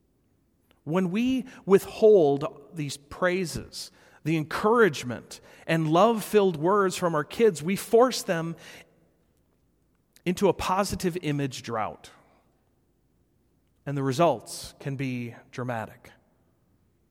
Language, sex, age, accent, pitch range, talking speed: English, male, 40-59, American, 150-205 Hz, 95 wpm